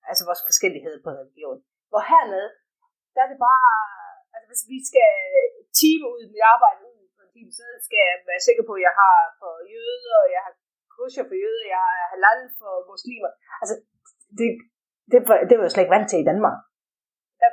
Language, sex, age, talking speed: Danish, female, 30-49, 190 wpm